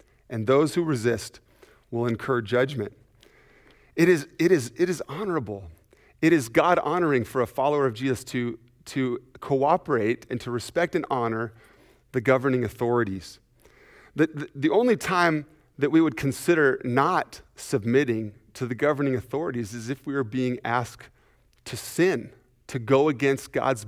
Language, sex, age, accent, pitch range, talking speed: English, male, 40-59, American, 120-155 Hz, 155 wpm